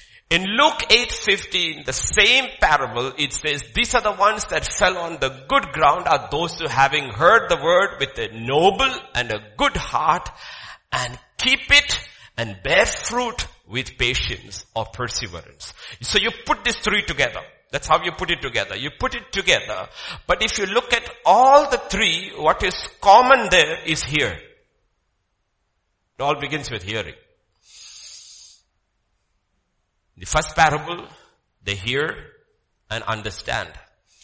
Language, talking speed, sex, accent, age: English, 145 wpm, male, Indian, 50-69